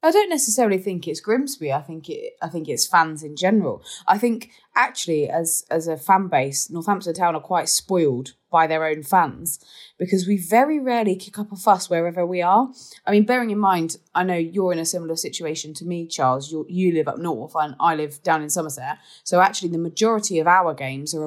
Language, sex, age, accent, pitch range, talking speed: English, female, 20-39, British, 165-210 Hz, 215 wpm